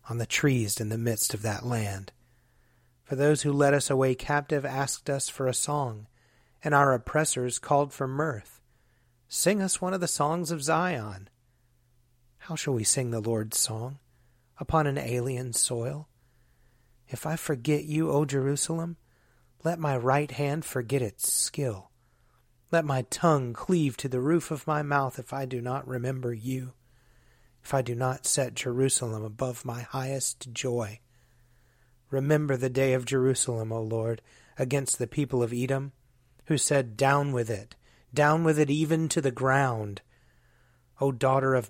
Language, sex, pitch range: English, male, 120-140 Hz